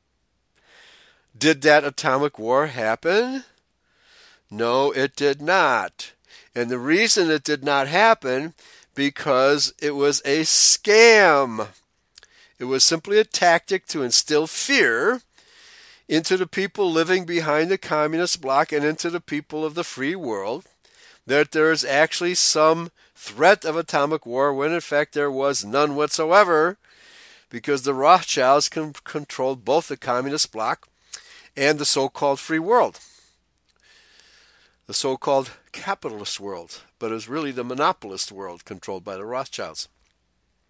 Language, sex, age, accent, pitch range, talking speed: English, male, 50-69, American, 140-190 Hz, 135 wpm